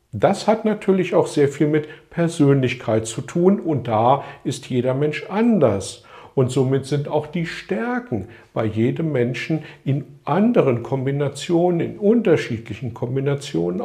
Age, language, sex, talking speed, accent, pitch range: 50-69, German, male, 135 wpm, German, 125-175 Hz